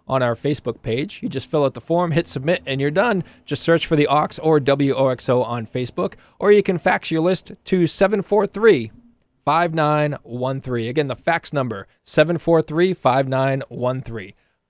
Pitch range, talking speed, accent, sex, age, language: 120-165 Hz, 150 wpm, American, male, 20-39, English